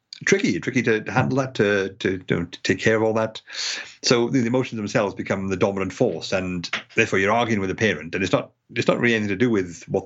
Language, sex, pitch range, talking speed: English, male, 95-115 Hz, 235 wpm